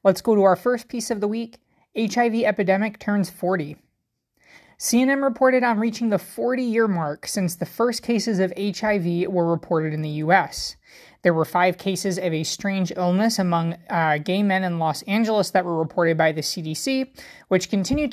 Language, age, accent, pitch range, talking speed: English, 20-39, American, 165-215 Hz, 180 wpm